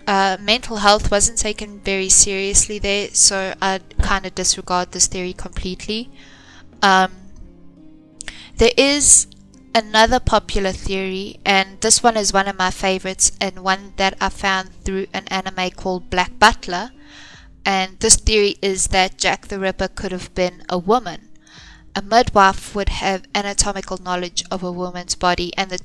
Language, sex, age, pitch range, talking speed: English, female, 10-29, 185-205 Hz, 155 wpm